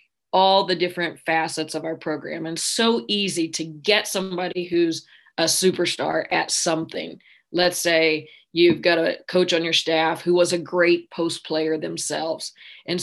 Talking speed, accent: 160 wpm, American